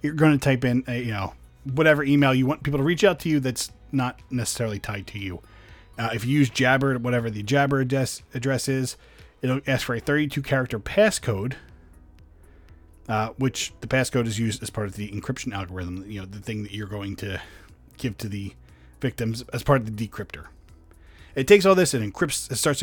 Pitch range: 100-145 Hz